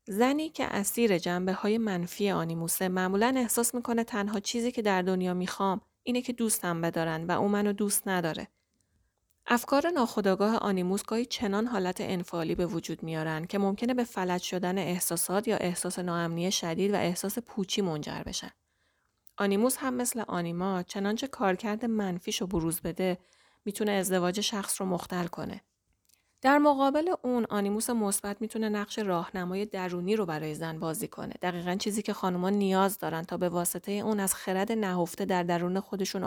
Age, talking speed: 30-49, 160 wpm